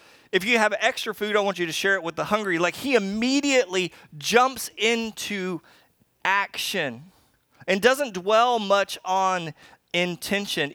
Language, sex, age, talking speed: English, male, 30-49, 145 wpm